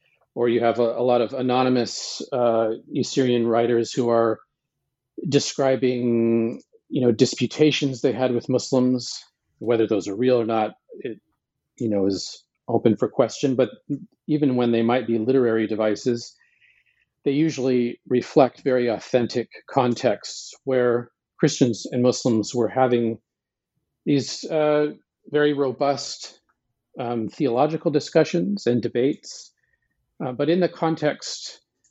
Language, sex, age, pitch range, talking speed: English, male, 40-59, 115-140 Hz, 130 wpm